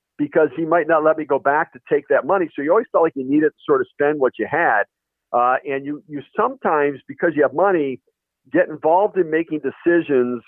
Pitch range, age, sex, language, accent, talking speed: 120-155 Hz, 50-69, male, English, American, 230 wpm